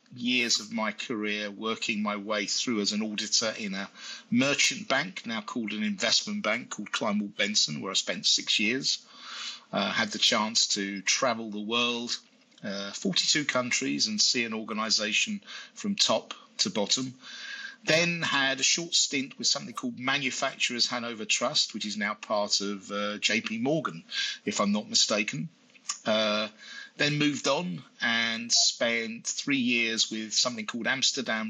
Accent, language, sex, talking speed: British, English, male, 155 wpm